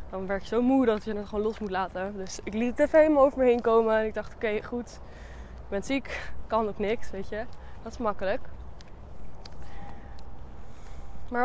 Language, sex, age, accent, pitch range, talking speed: Dutch, female, 20-39, Dutch, 175-245 Hz, 205 wpm